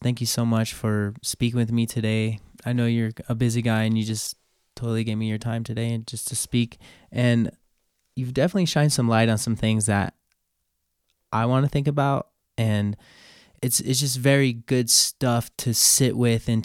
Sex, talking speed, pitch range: male, 195 wpm, 110-125 Hz